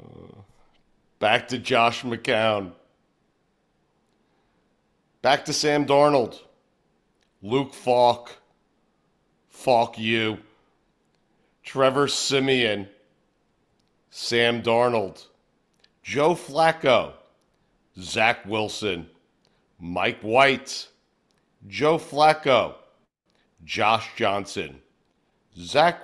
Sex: male